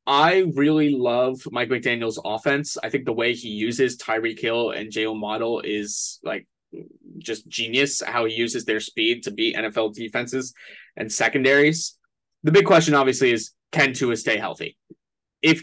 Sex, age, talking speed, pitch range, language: male, 20-39, 160 wpm, 115-140 Hz, English